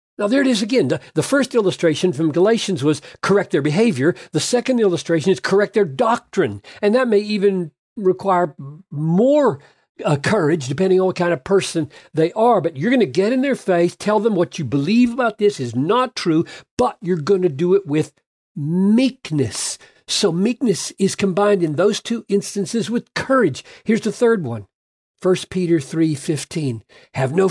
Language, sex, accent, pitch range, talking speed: English, male, American, 150-205 Hz, 180 wpm